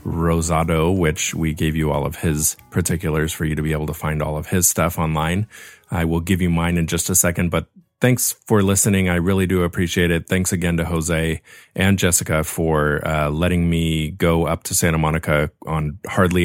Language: English